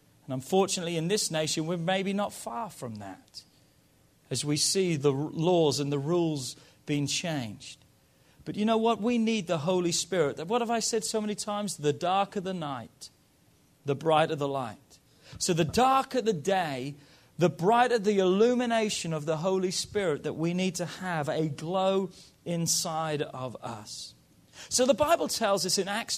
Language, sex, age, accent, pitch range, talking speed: English, male, 40-59, British, 160-210 Hz, 170 wpm